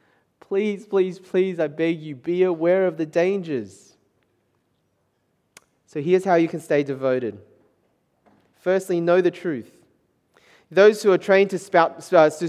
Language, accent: English, Australian